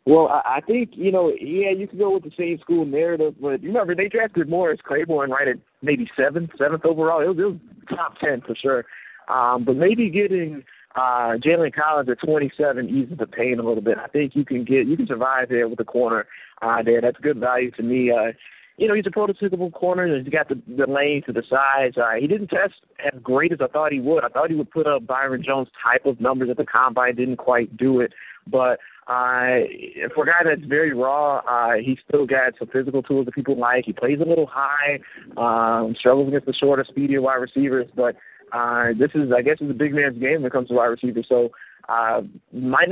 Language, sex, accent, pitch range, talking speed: English, male, American, 125-150 Hz, 230 wpm